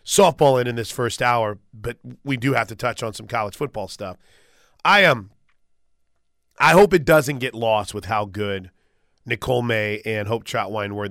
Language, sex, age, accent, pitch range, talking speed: English, male, 30-49, American, 110-140 Hz, 190 wpm